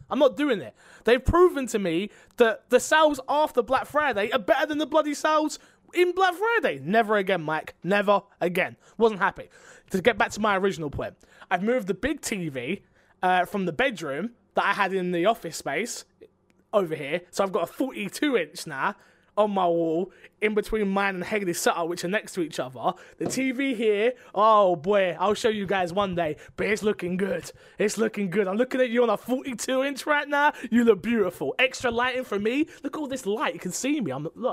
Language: English